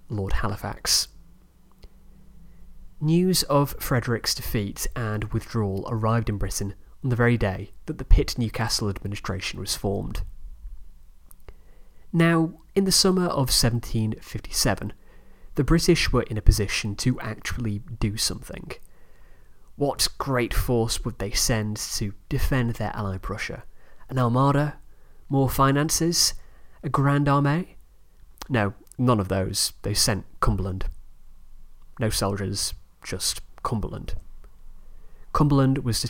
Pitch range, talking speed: 95-125 Hz, 115 wpm